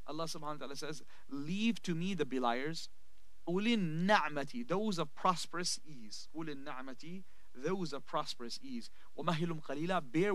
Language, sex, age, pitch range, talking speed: English, male, 30-49, 135-175 Hz, 120 wpm